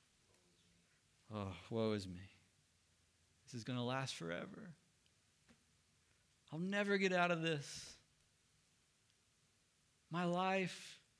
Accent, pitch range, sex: American, 100-135 Hz, male